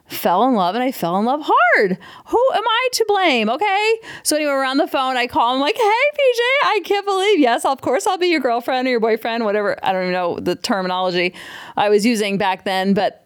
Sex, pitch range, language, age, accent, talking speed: female, 210-345 Hz, English, 30-49, American, 235 wpm